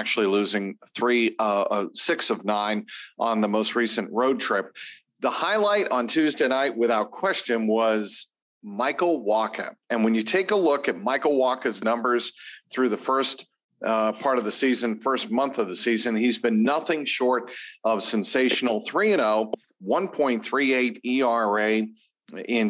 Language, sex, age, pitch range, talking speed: English, male, 50-69, 110-135 Hz, 150 wpm